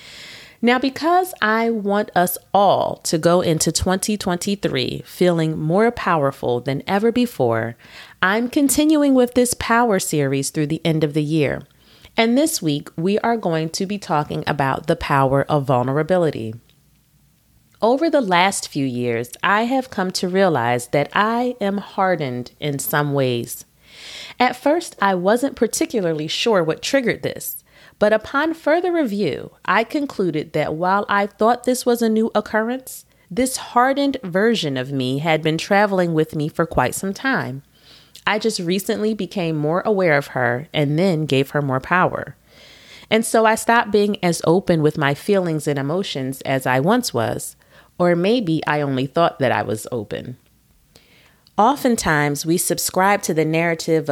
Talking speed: 155 wpm